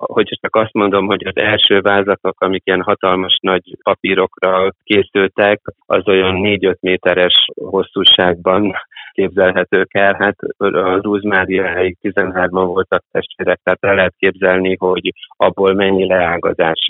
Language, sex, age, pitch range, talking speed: Hungarian, male, 30-49, 90-100 Hz, 125 wpm